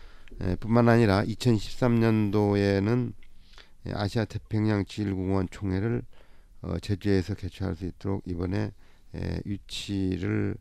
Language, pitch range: Korean, 90-110 Hz